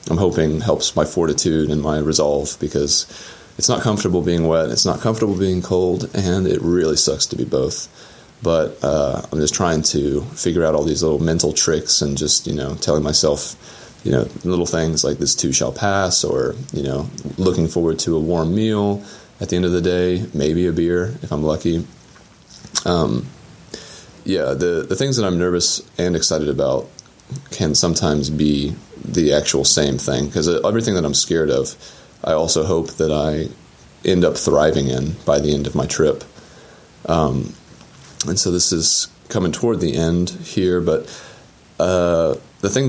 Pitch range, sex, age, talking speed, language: 75-90 Hz, male, 30-49, 180 wpm, English